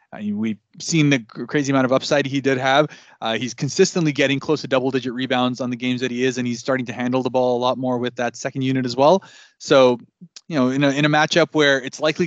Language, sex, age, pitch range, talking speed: English, male, 20-39, 130-150 Hz, 260 wpm